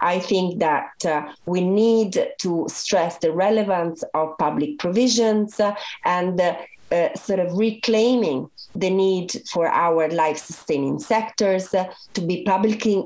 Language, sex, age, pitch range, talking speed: Czech, female, 40-59, 160-225 Hz, 140 wpm